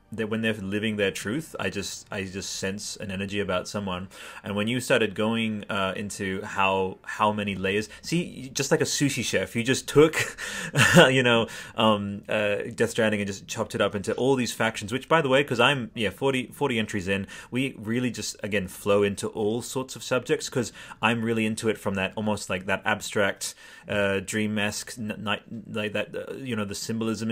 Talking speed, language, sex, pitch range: 205 wpm, English, male, 95-115 Hz